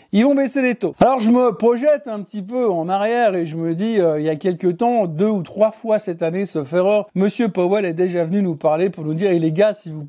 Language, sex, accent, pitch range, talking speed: French, male, French, 175-225 Hz, 280 wpm